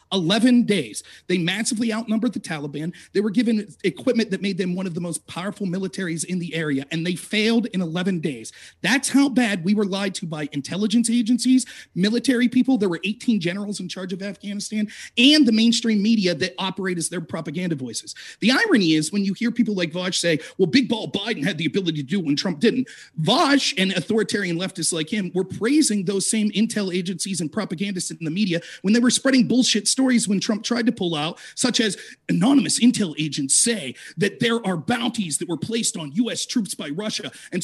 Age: 40-59